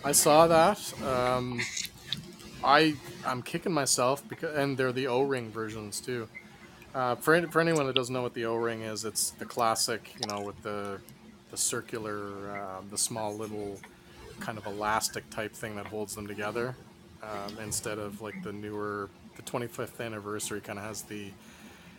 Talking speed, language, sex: 170 wpm, English, male